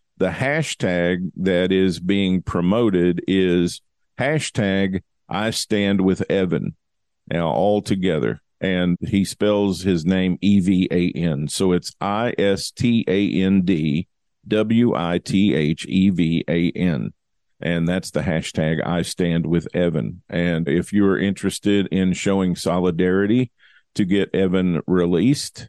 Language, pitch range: English, 85-105 Hz